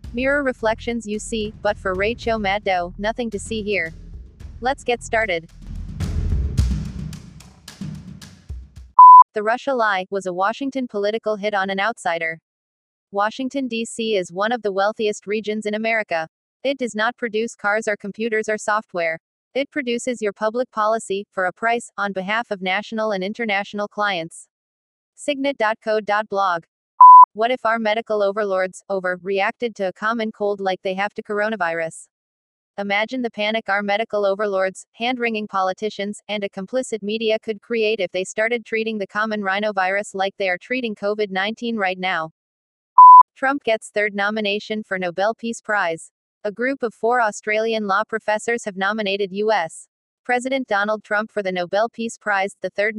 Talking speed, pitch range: 150 wpm, 195-225 Hz